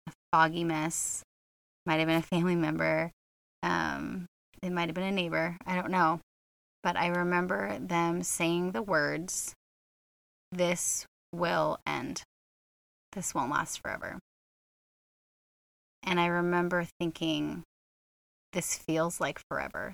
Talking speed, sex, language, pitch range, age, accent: 120 wpm, female, English, 155-175 Hz, 20-39, American